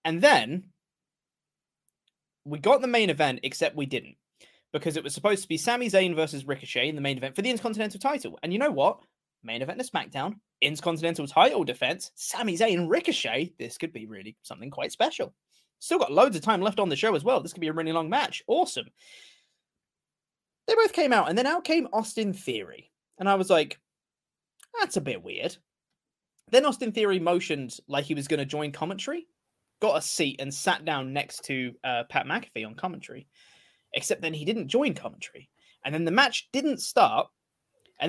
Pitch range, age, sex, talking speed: 140-215 Hz, 20-39, male, 195 wpm